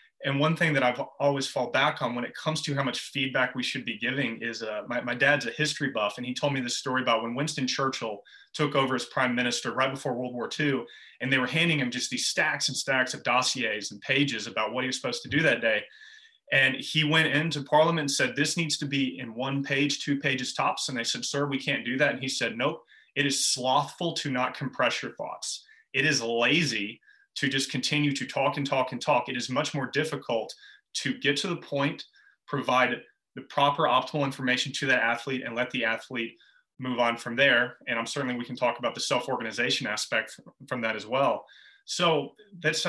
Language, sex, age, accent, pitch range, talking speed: English, male, 30-49, American, 125-150 Hz, 230 wpm